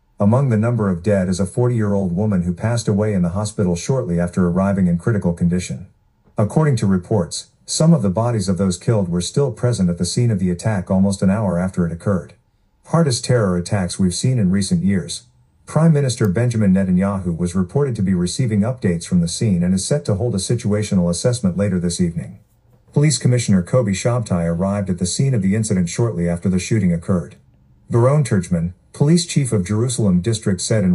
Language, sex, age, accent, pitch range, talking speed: English, male, 50-69, American, 90-120 Hz, 200 wpm